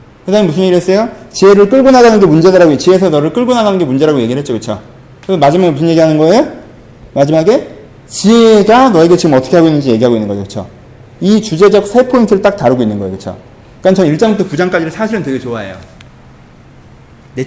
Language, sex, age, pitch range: Korean, male, 30-49, 125-200 Hz